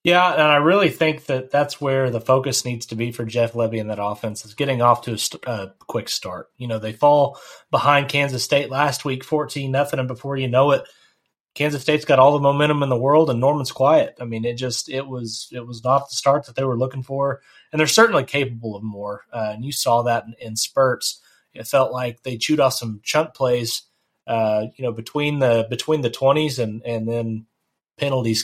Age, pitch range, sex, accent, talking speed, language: 30-49, 120-145 Hz, male, American, 225 wpm, English